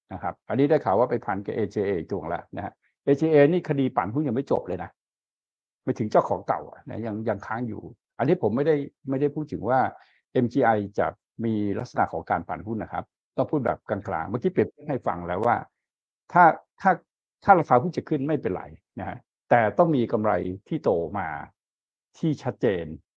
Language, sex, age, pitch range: Thai, male, 60-79, 115-150 Hz